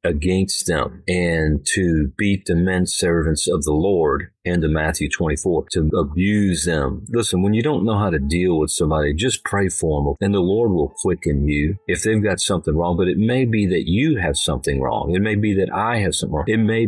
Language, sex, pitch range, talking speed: English, male, 85-110 Hz, 215 wpm